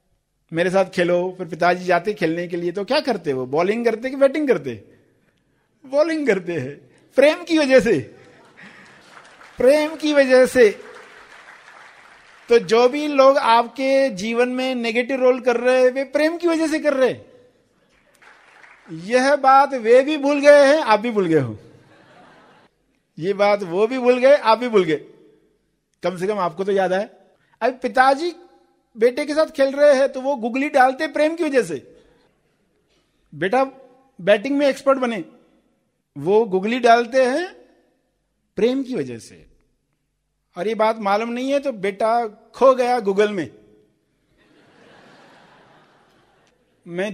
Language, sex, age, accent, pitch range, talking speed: Hindi, male, 50-69, native, 185-270 Hz, 155 wpm